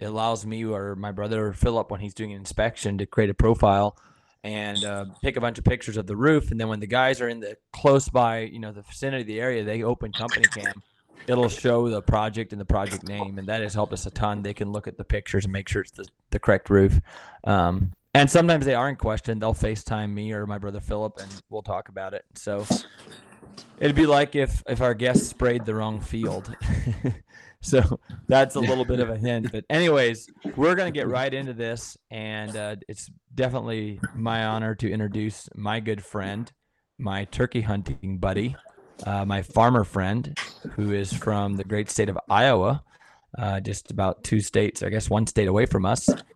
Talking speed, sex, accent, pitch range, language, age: 210 wpm, male, American, 100-120 Hz, English, 20-39